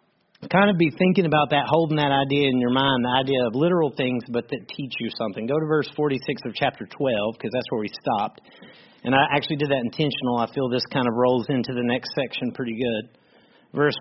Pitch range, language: 125-160 Hz, English